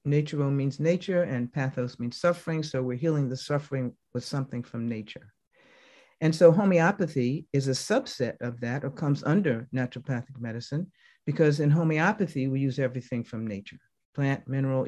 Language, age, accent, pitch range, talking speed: English, 50-69, American, 130-160 Hz, 155 wpm